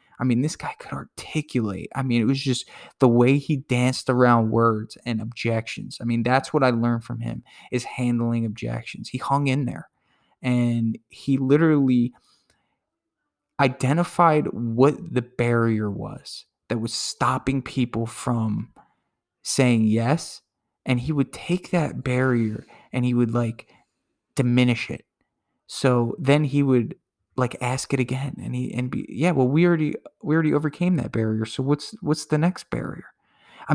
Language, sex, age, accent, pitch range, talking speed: English, male, 20-39, American, 120-140 Hz, 160 wpm